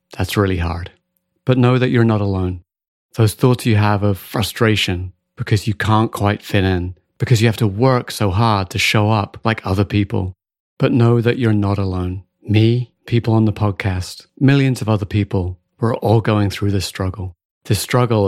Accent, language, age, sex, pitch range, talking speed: British, English, 30-49, male, 95-120 Hz, 185 wpm